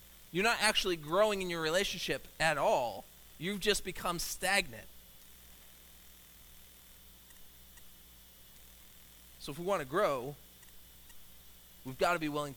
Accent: American